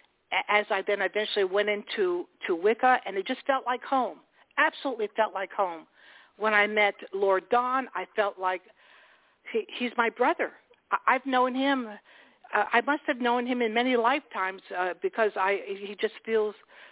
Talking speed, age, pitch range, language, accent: 175 wpm, 60-79, 200-260 Hz, English, American